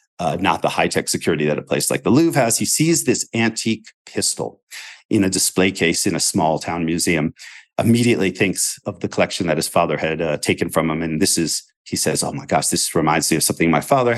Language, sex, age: English, male, 40-59